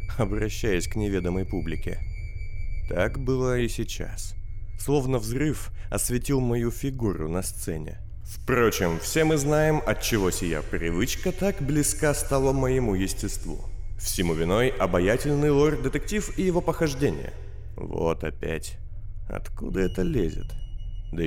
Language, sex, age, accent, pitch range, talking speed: Russian, male, 30-49, native, 95-115 Hz, 115 wpm